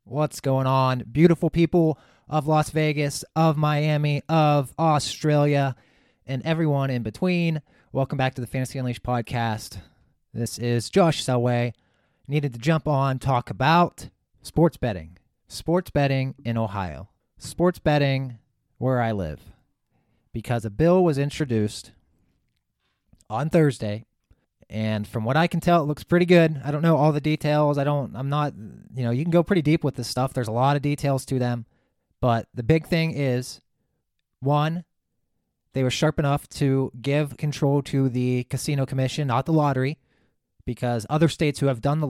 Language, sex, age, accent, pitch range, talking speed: English, male, 30-49, American, 120-150 Hz, 165 wpm